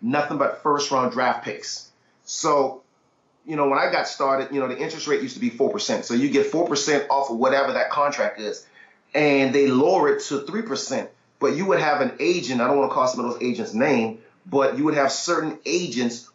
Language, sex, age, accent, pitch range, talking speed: English, male, 30-49, American, 140-205 Hz, 215 wpm